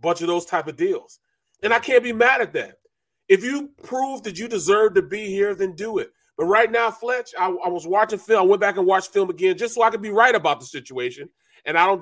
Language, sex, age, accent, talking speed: English, male, 30-49, American, 265 wpm